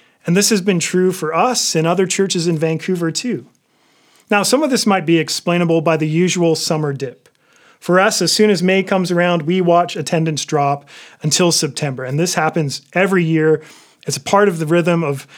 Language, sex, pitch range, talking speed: English, male, 155-195 Hz, 200 wpm